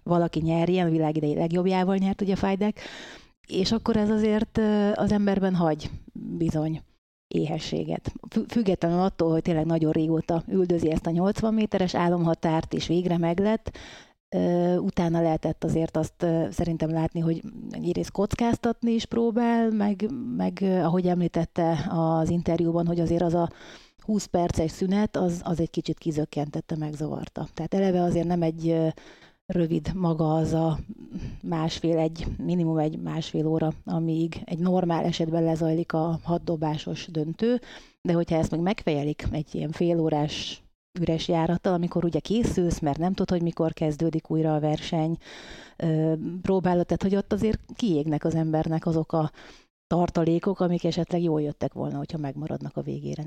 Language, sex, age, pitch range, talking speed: Hungarian, female, 30-49, 160-190 Hz, 140 wpm